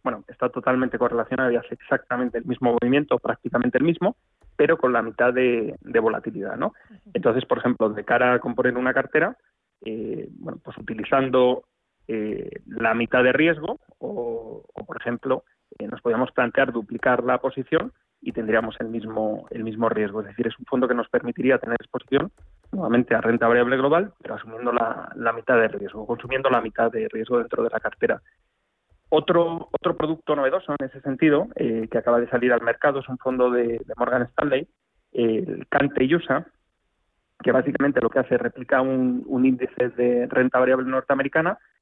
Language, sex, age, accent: Spanish, male, 30-49, Spanish